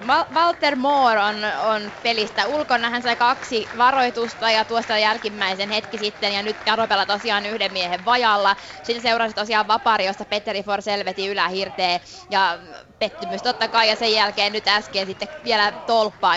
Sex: female